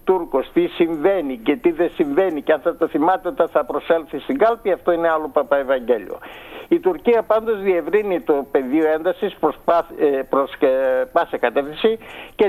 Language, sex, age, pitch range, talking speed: Greek, male, 60-79, 160-205 Hz, 155 wpm